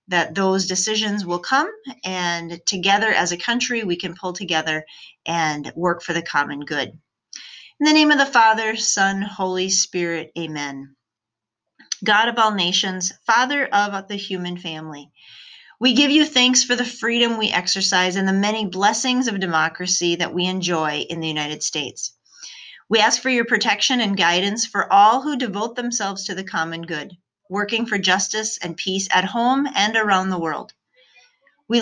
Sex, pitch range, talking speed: female, 170-220 Hz, 170 wpm